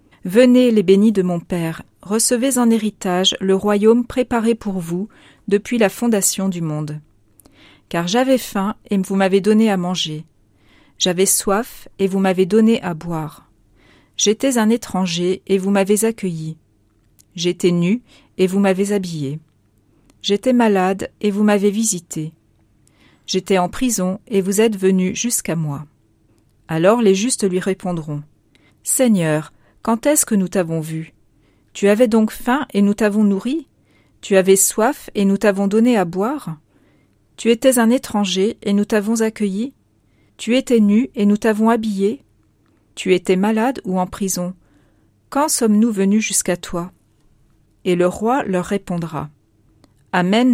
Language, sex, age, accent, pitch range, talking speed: French, female, 40-59, French, 160-220 Hz, 150 wpm